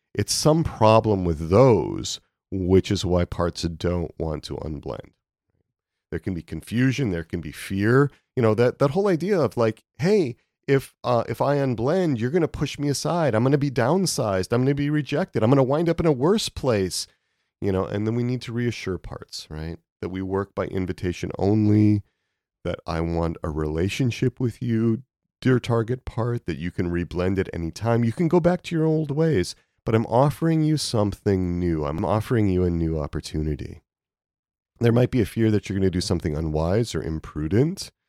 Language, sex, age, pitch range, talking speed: English, male, 40-59, 90-135 Hz, 200 wpm